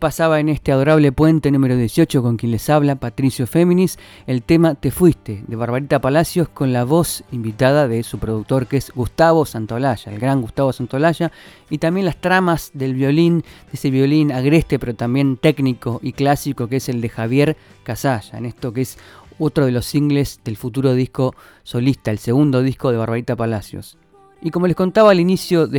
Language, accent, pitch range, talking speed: Spanish, Argentinian, 125-160 Hz, 190 wpm